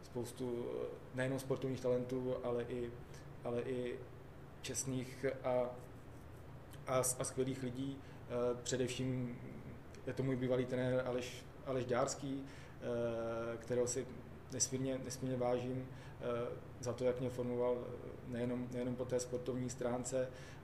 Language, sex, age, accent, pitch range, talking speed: Czech, male, 20-39, native, 120-130 Hz, 115 wpm